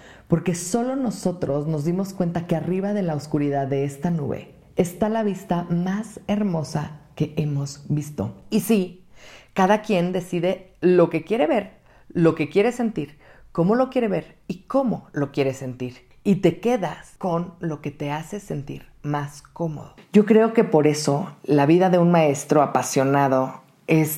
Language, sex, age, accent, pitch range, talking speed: Spanish, female, 40-59, Mexican, 150-195 Hz, 165 wpm